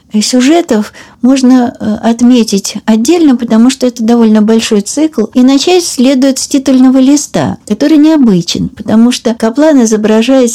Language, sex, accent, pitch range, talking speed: Russian, female, native, 200-255 Hz, 125 wpm